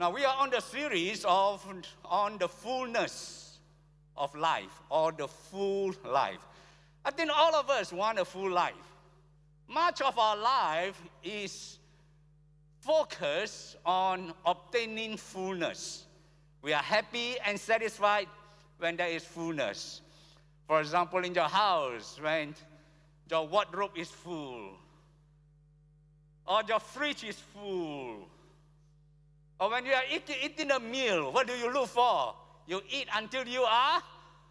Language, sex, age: English, male, 60-79